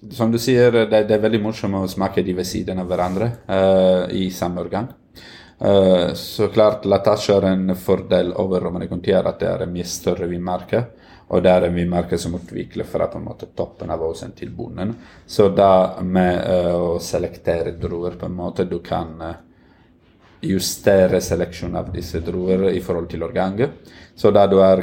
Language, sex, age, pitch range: English, male, 30-49, 85-100 Hz